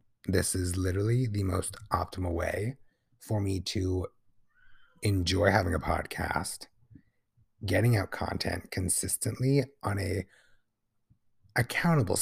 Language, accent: English, American